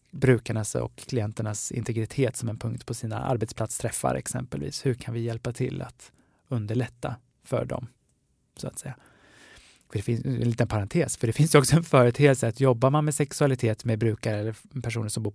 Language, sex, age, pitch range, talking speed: Swedish, male, 20-39, 115-135 Hz, 185 wpm